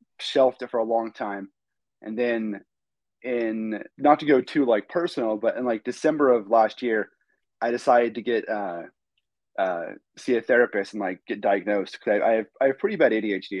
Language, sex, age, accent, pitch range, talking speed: English, male, 30-49, American, 110-135 Hz, 190 wpm